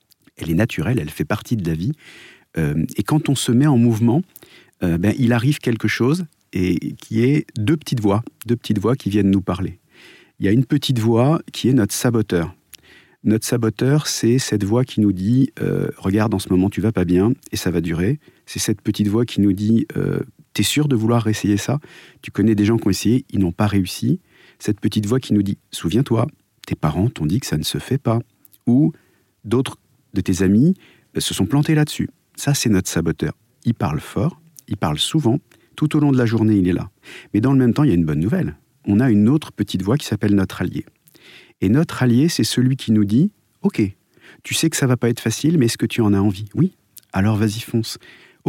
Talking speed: 240 wpm